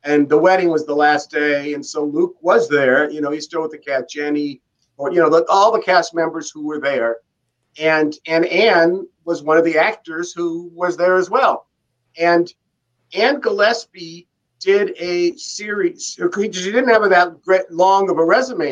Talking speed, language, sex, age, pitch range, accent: 190 wpm, English, male, 50-69, 160-225 Hz, American